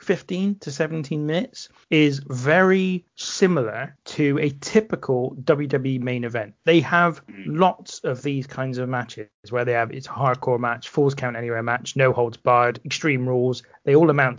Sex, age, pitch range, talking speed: male, 30-49, 125-160 Hz, 165 wpm